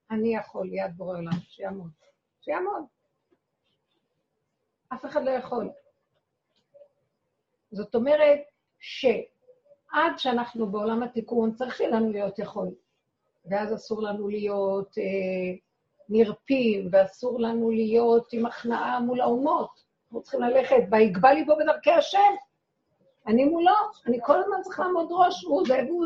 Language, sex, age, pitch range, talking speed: Hebrew, female, 50-69, 230-300 Hz, 120 wpm